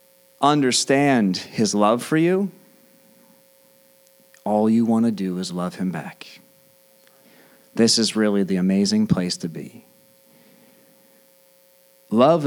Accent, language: American, English